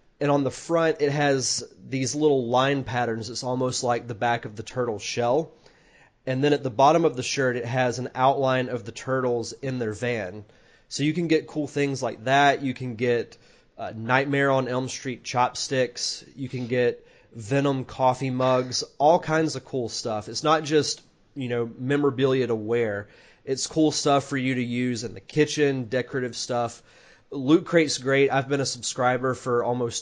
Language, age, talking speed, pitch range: English, 30-49, 190 wpm, 120-145 Hz